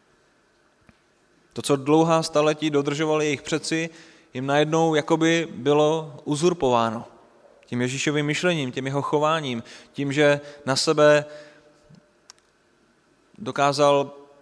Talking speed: 95 wpm